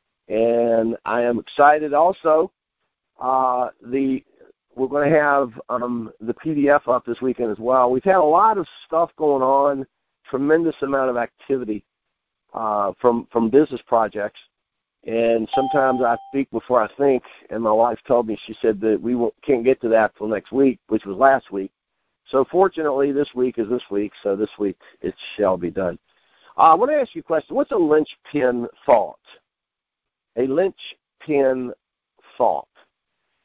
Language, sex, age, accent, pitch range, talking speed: English, male, 50-69, American, 120-160 Hz, 165 wpm